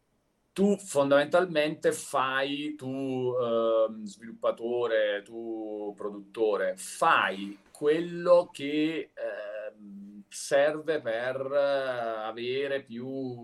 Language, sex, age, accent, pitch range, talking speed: Italian, male, 40-59, native, 120-165 Hz, 70 wpm